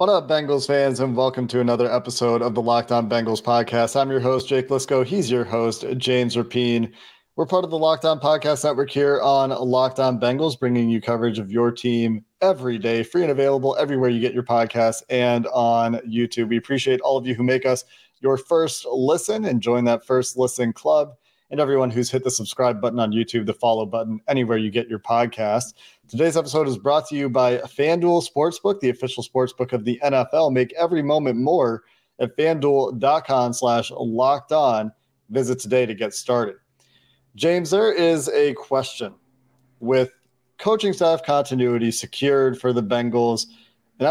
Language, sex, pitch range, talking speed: English, male, 120-140 Hz, 180 wpm